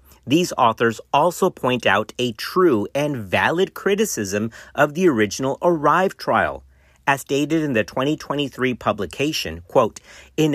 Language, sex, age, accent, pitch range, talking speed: English, male, 40-59, American, 110-165 Hz, 130 wpm